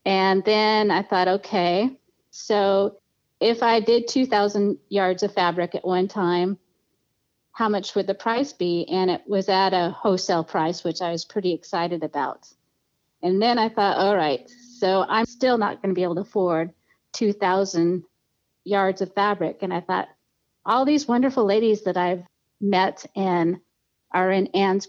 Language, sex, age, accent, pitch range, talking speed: English, female, 40-59, American, 180-210 Hz, 165 wpm